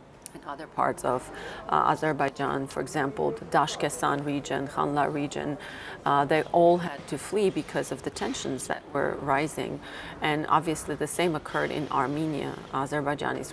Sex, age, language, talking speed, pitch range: female, 40-59, English, 150 wpm, 140-165 Hz